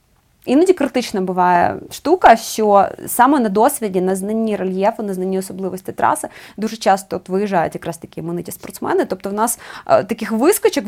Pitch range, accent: 190-255 Hz, native